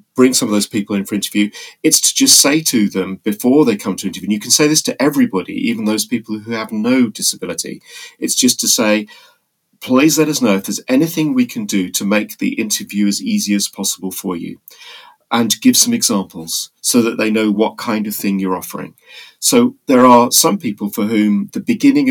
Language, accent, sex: English, British, male